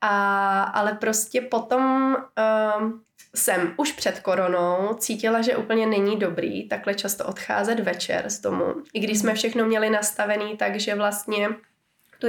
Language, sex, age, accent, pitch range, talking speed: Czech, female, 20-39, native, 200-230 Hz, 130 wpm